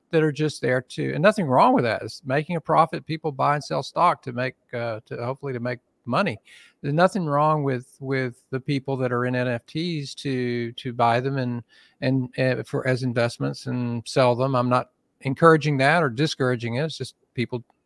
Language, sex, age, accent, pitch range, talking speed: English, male, 50-69, American, 125-155 Hz, 205 wpm